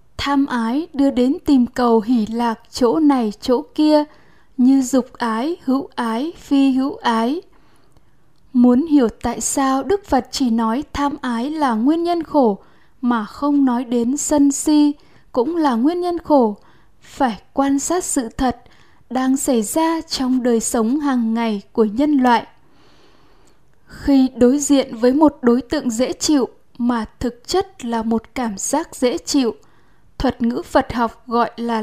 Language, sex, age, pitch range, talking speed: Vietnamese, female, 10-29, 240-290 Hz, 160 wpm